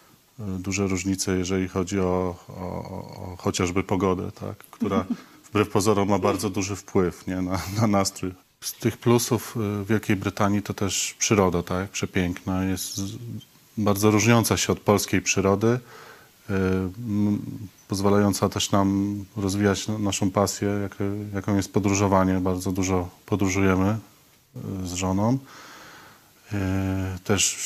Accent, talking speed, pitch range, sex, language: native, 115 wpm, 95-105 Hz, male, Polish